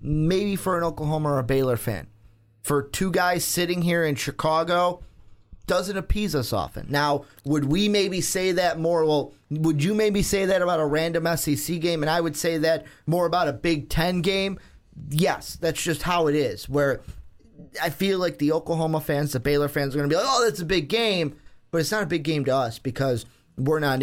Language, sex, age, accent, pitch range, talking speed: English, male, 30-49, American, 140-180 Hz, 210 wpm